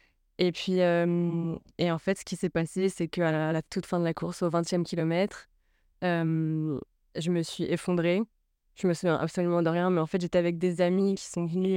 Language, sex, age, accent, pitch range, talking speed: French, female, 20-39, French, 165-185 Hz, 215 wpm